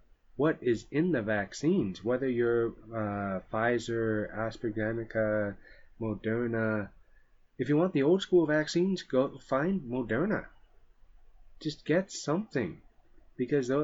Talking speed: 110 wpm